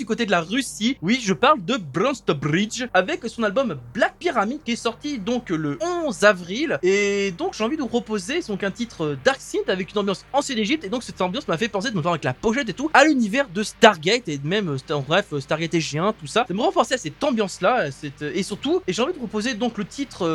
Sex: male